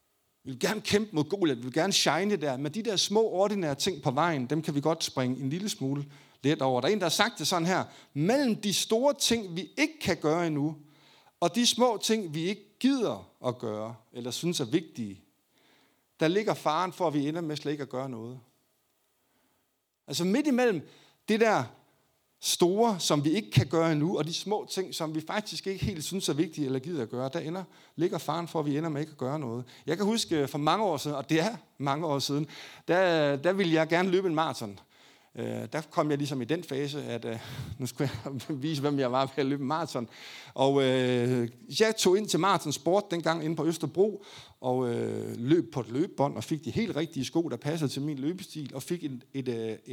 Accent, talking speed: native, 225 wpm